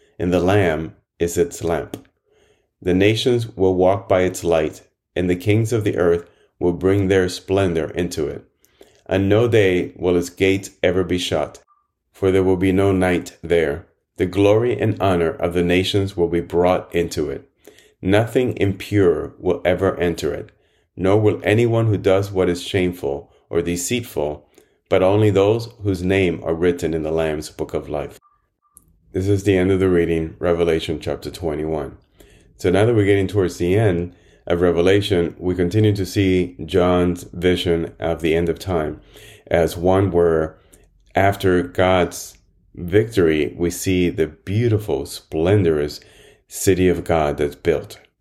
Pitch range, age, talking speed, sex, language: 85-95 Hz, 30-49, 160 wpm, male, English